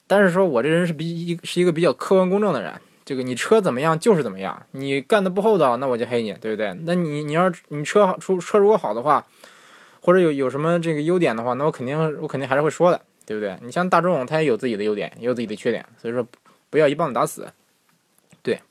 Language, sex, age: Chinese, male, 20-39